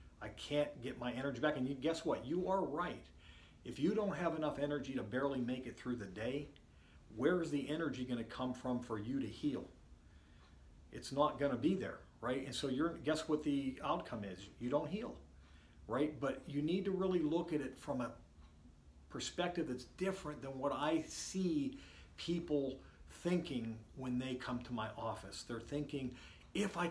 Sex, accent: male, American